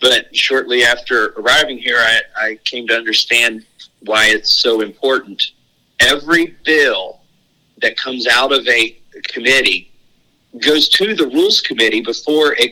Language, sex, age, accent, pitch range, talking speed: English, male, 40-59, American, 125-200 Hz, 135 wpm